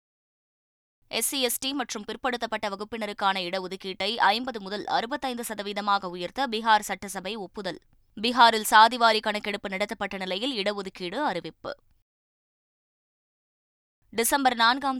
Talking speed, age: 90 wpm, 20-39